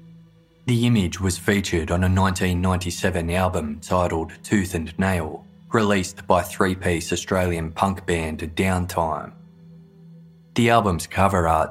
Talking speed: 120 wpm